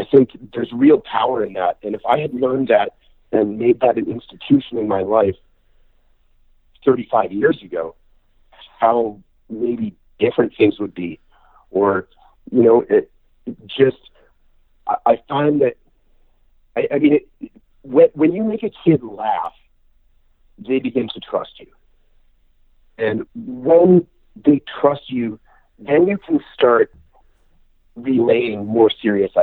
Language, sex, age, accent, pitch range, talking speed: English, male, 50-69, American, 115-180 Hz, 125 wpm